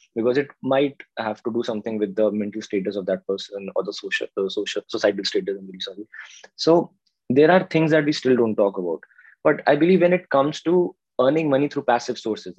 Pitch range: 95-135 Hz